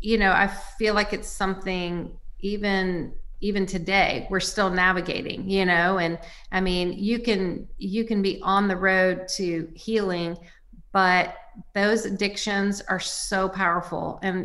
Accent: American